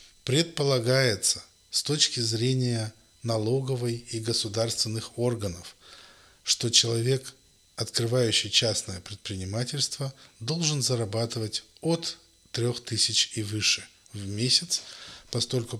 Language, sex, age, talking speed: Russian, male, 20-39, 85 wpm